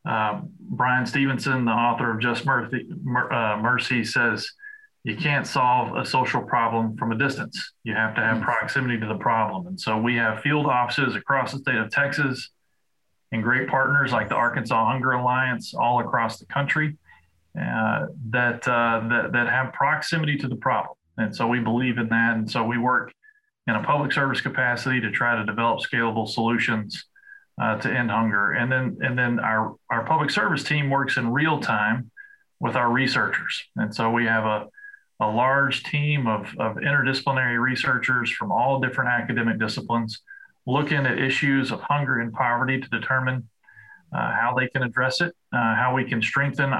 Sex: male